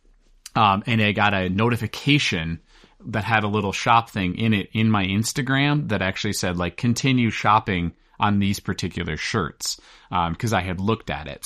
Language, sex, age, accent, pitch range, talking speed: English, male, 30-49, American, 95-115 Hz, 180 wpm